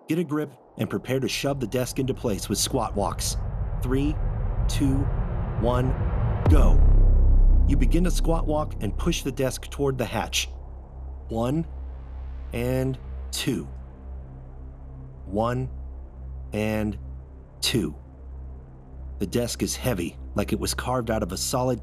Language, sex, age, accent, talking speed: English, male, 30-49, American, 130 wpm